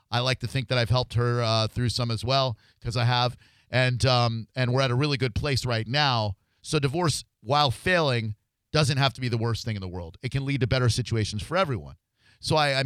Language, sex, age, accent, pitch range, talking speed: English, male, 40-59, American, 110-135 Hz, 245 wpm